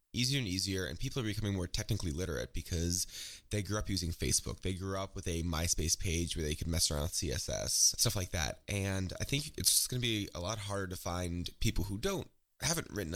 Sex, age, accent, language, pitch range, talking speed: male, 20-39, American, English, 85-105 Hz, 225 wpm